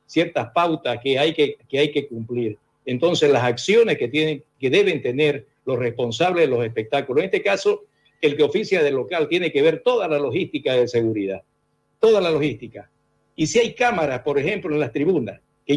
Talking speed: 195 wpm